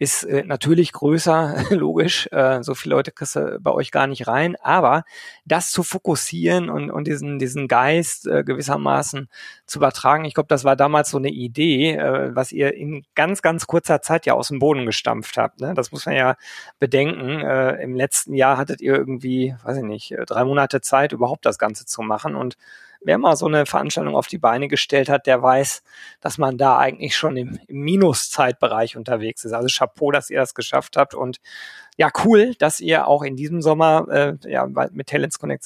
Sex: male